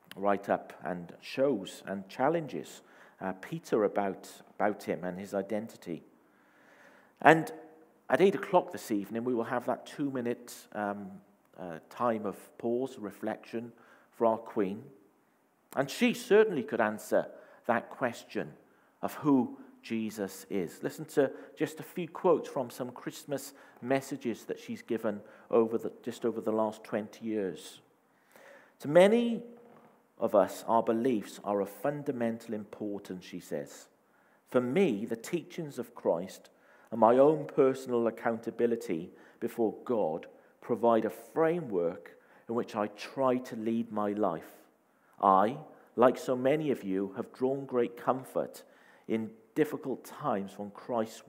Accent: British